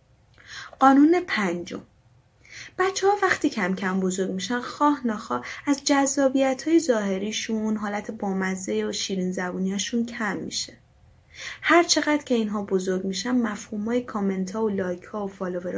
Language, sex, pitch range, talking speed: Persian, female, 195-260 Hz, 135 wpm